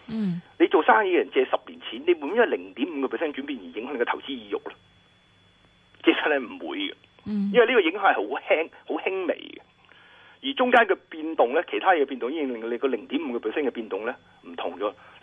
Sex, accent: male, native